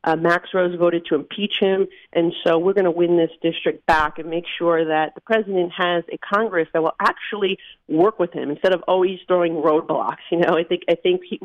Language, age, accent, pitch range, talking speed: English, 40-59, American, 170-205 Hz, 225 wpm